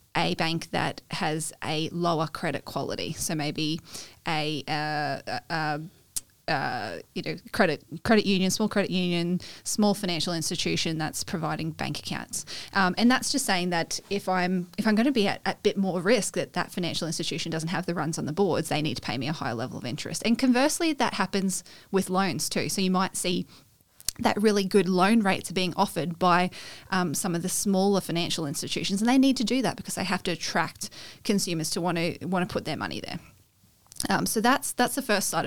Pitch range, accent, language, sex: 165-205 Hz, Australian, English, female